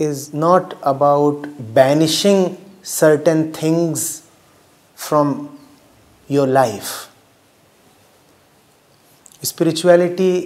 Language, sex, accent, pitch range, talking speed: English, male, Indian, 150-210 Hz, 55 wpm